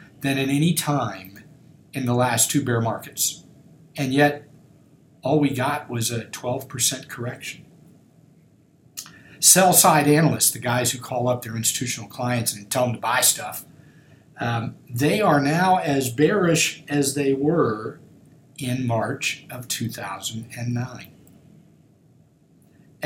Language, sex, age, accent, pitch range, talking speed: English, male, 60-79, American, 125-155 Hz, 130 wpm